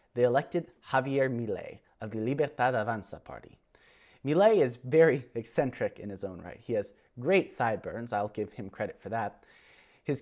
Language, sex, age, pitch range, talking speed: English, male, 30-49, 115-160 Hz, 165 wpm